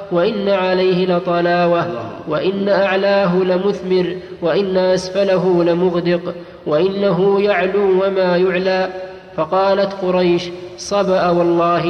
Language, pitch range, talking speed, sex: Arabic, 175-195 Hz, 85 wpm, male